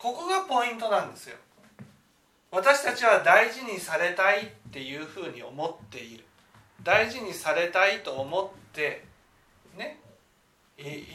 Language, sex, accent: Japanese, male, native